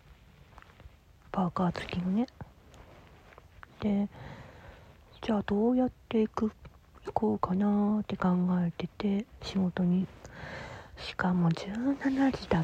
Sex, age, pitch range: female, 40-59, 165-200 Hz